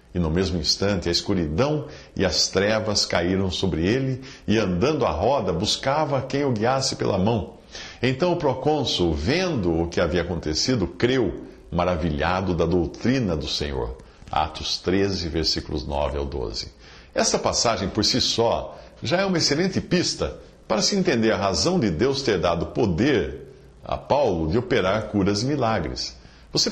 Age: 60-79